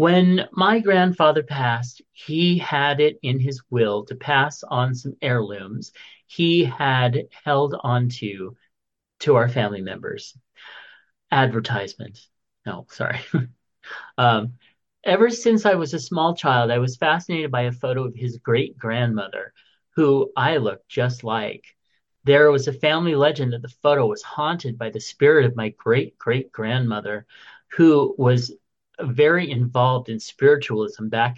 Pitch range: 120-155 Hz